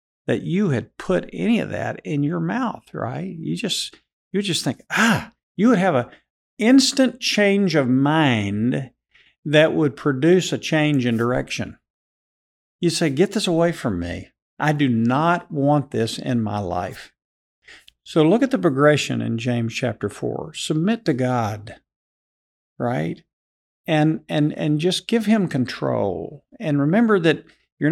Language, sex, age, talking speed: English, male, 50-69, 155 wpm